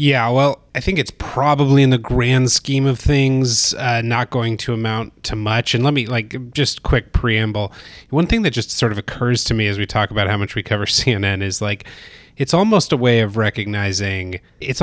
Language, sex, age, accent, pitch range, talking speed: English, male, 30-49, American, 105-125 Hz, 215 wpm